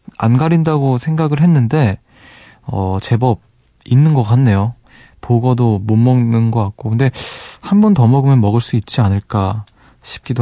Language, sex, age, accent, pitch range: Korean, male, 20-39, native, 105-135 Hz